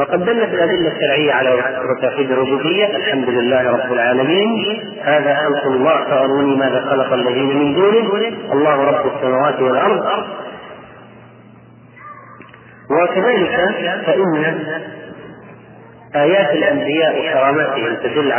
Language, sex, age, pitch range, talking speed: Arabic, male, 40-59, 130-165 Hz, 100 wpm